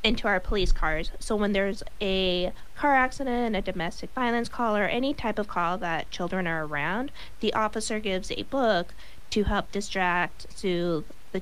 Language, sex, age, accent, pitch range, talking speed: English, female, 20-39, American, 175-220 Hz, 175 wpm